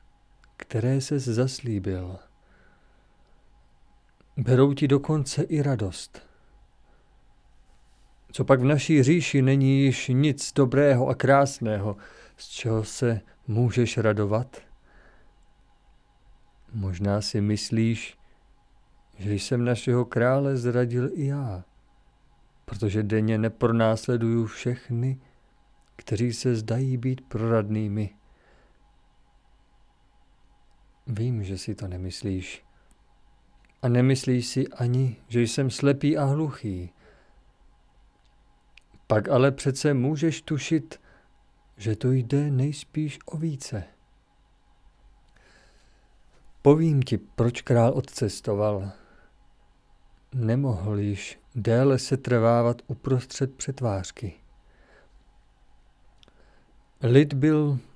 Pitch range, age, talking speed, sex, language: 110-135 Hz, 50-69, 85 wpm, male, Czech